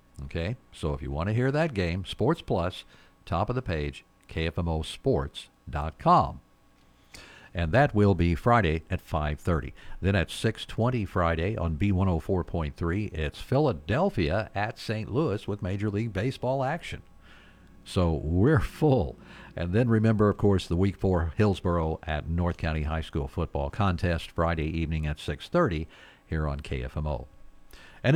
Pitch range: 80-105 Hz